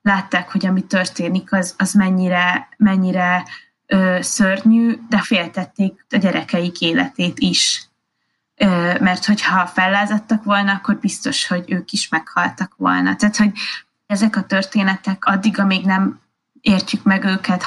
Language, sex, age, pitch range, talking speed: Hungarian, female, 20-39, 180-205 Hz, 130 wpm